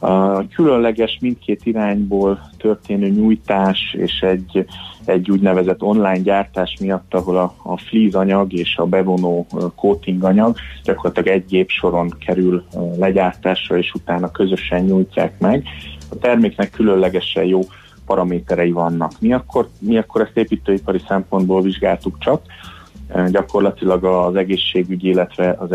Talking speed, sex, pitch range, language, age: 130 wpm, male, 90-100 Hz, Hungarian, 30-49